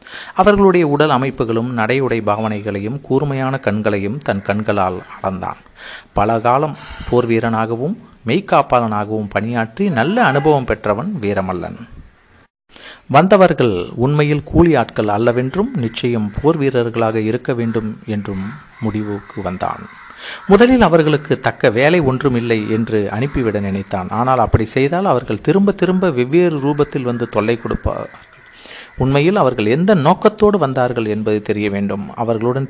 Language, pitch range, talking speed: Tamil, 110-150 Hz, 110 wpm